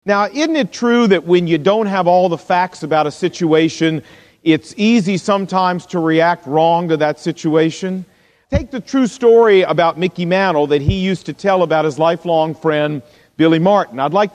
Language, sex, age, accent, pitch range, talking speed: English, male, 50-69, American, 165-210 Hz, 185 wpm